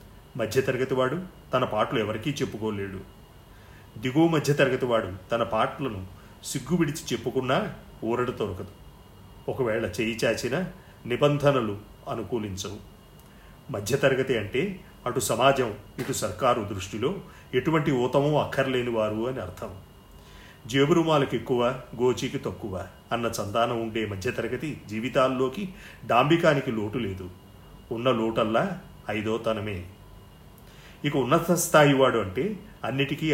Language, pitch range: Telugu, 105-140 Hz